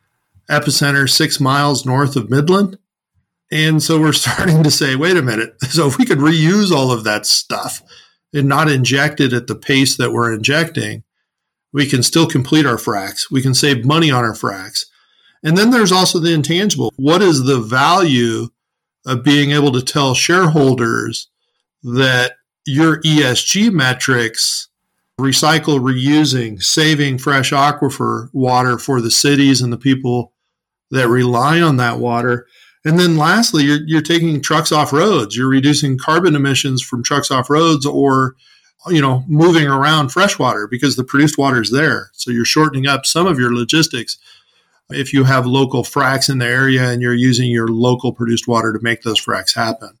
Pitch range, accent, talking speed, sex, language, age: 125-155 Hz, American, 170 wpm, male, English, 50-69